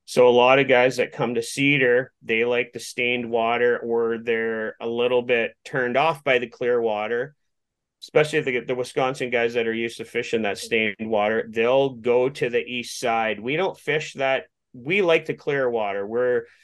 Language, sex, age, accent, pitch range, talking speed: English, male, 30-49, American, 120-140 Hz, 200 wpm